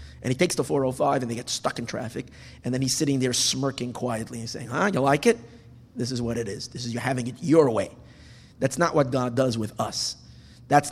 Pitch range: 120-150 Hz